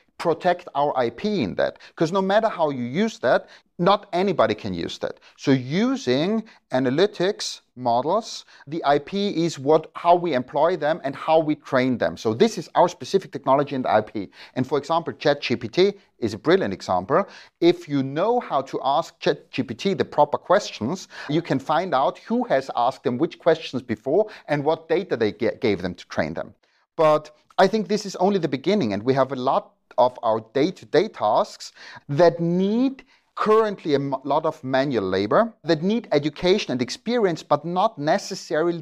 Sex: male